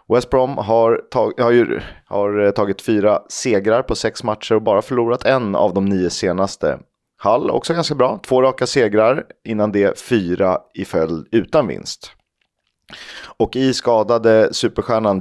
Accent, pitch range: native, 95-120 Hz